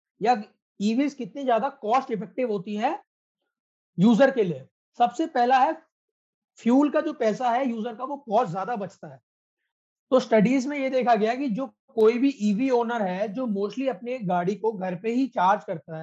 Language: Hindi